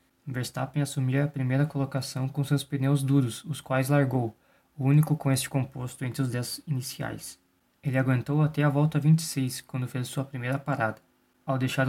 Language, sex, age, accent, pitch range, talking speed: Portuguese, male, 20-39, Brazilian, 125-145 Hz, 170 wpm